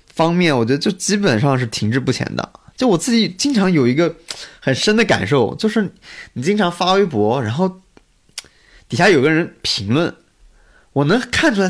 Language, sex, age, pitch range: Chinese, male, 20-39, 120-200 Hz